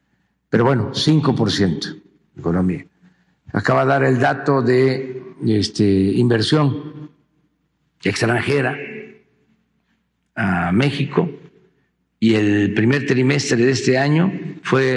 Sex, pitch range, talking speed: male, 110-140 Hz, 100 wpm